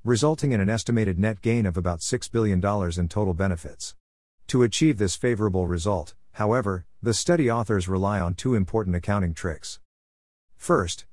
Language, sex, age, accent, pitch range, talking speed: English, male, 50-69, American, 90-115 Hz, 155 wpm